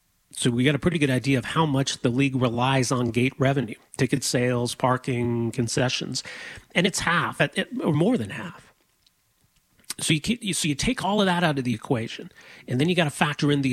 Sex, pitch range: male, 125-155 Hz